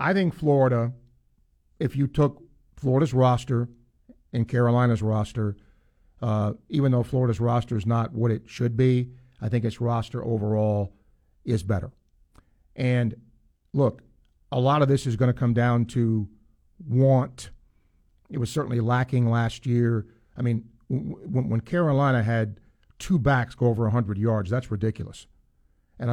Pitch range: 115-135 Hz